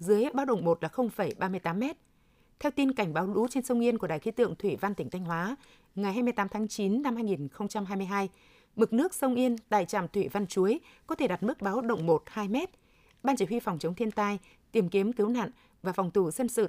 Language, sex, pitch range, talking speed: Vietnamese, female, 195-235 Hz, 230 wpm